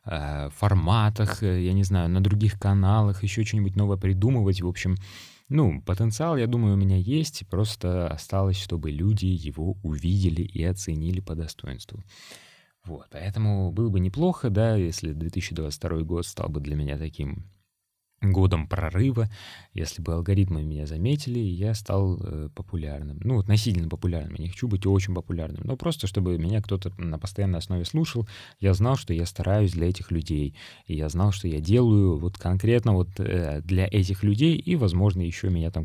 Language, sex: Russian, male